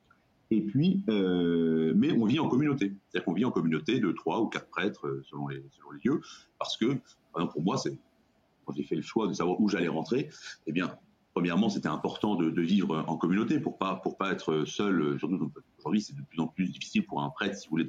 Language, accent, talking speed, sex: French, French, 245 wpm, male